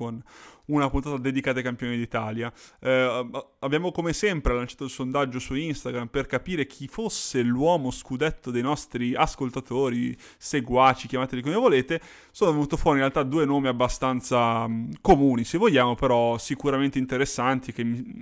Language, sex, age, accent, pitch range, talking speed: Italian, male, 20-39, native, 120-140 Hz, 150 wpm